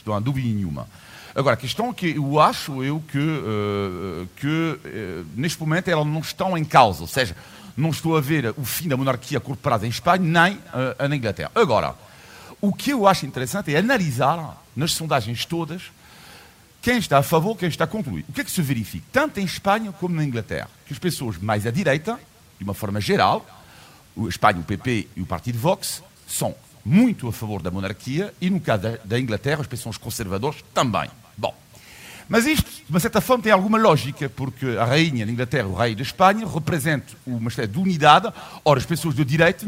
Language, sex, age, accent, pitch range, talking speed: Portuguese, male, 50-69, French, 115-170 Hz, 200 wpm